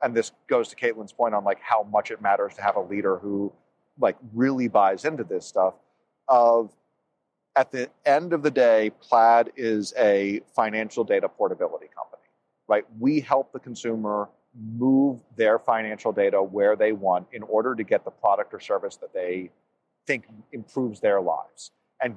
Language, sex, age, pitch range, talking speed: English, male, 40-59, 110-165 Hz, 175 wpm